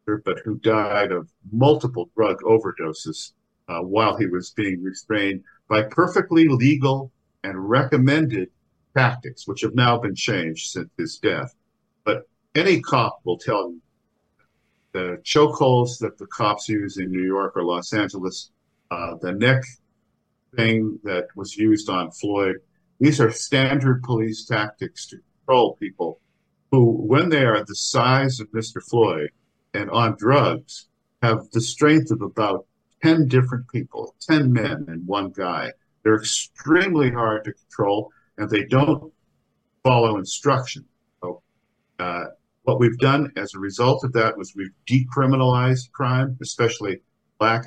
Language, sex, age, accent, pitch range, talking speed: English, male, 50-69, American, 100-130 Hz, 145 wpm